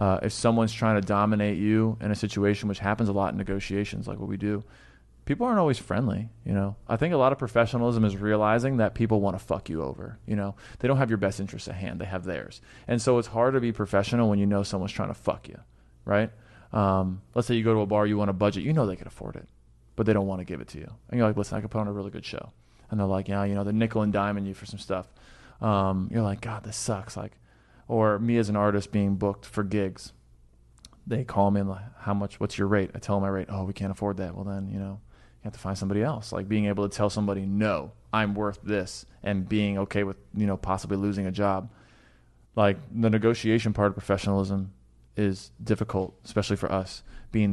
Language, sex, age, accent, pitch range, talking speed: English, male, 20-39, American, 100-110 Hz, 250 wpm